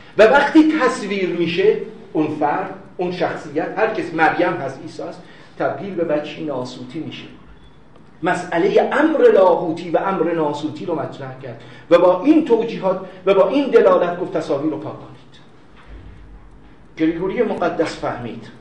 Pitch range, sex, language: 120-195 Hz, male, Persian